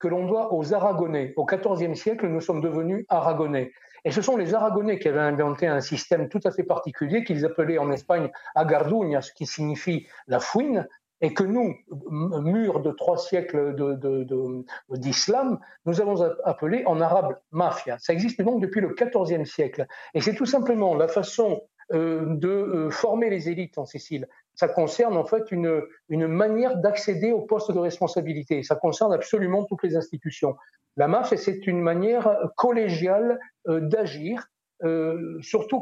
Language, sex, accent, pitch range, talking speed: French, male, French, 160-210 Hz, 170 wpm